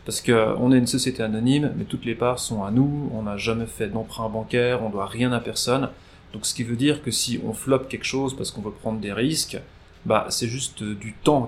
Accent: French